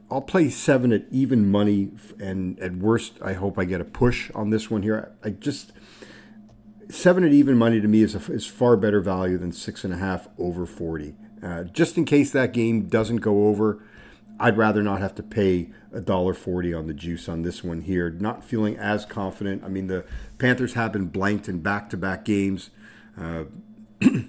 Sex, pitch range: male, 100-115 Hz